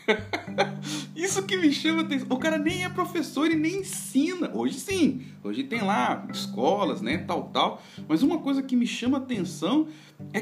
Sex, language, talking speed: male, Portuguese, 175 wpm